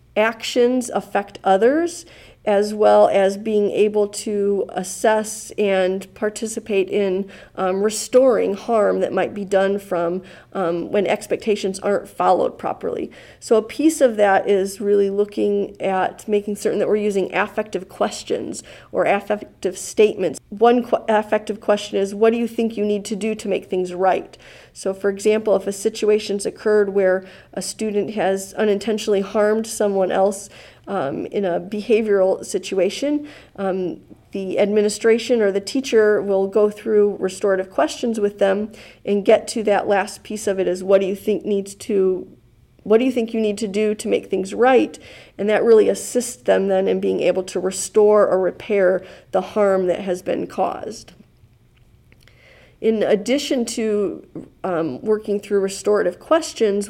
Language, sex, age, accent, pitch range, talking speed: English, female, 40-59, American, 195-220 Hz, 155 wpm